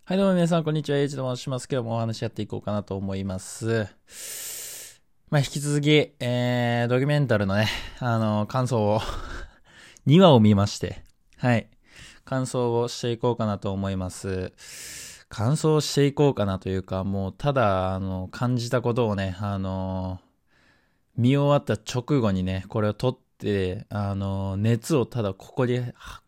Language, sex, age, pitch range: Japanese, male, 20-39, 100-125 Hz